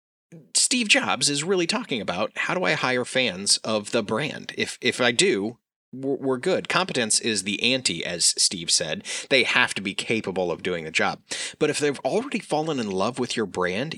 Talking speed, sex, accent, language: 200 wpm, male, American, English